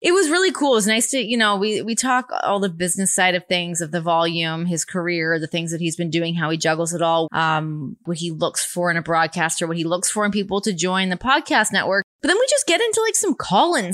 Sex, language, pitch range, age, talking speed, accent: female, English, 160-205 Hz, 20-39, 270 wpm, American